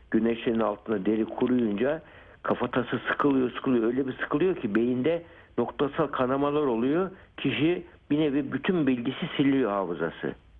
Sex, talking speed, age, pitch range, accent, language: male, 125 wpm, 60-79, 100-130 Hz, native, Turkish